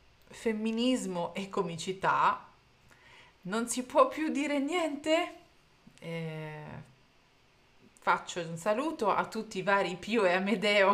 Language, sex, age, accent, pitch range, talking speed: Italian, female, 30-49, native, 170-245 Hz, 110 wpm